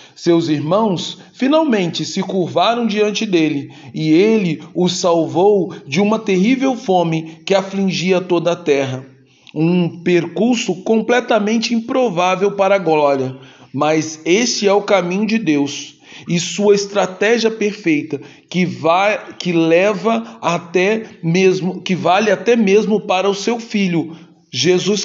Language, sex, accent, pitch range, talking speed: Portuguese, male, Brazilian, 160-210 Hz, 125 wpm